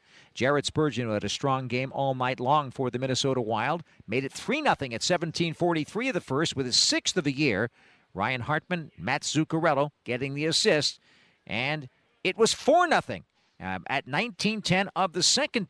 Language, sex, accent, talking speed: English, male, American, 165 wpm